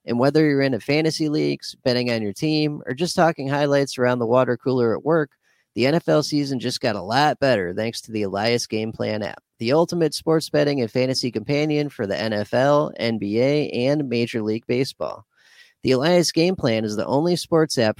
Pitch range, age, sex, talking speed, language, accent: 110-140 Hz, 30-49, male, 195 wpm, English, American